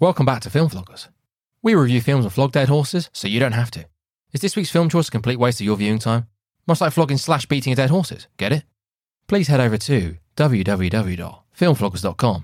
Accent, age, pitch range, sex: British, 20-39, 105-140 Hz, male